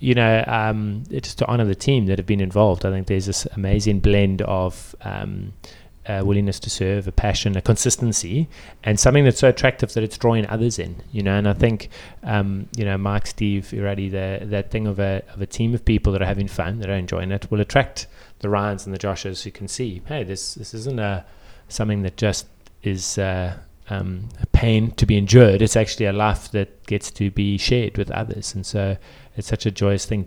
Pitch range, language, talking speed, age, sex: 95-115 Hz, English, 220 wpm, 30-49, male